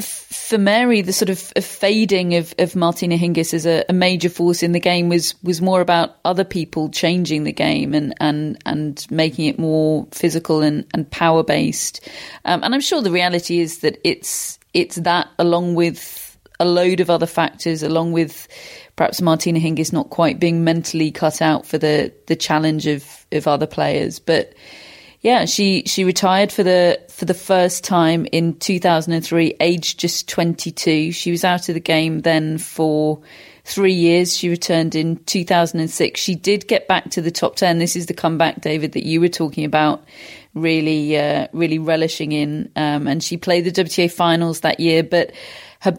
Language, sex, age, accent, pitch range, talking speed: English, female, 30-49, British, 160-180 Hz, 190 wpm